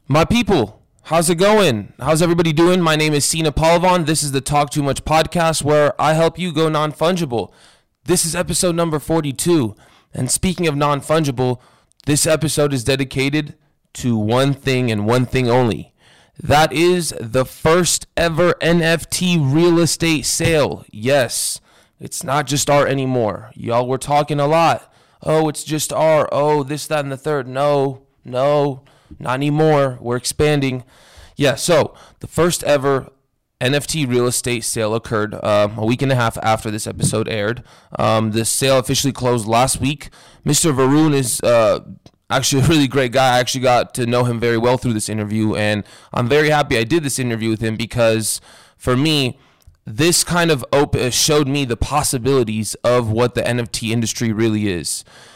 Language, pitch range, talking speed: English, 120-155 Hz, 170 wpm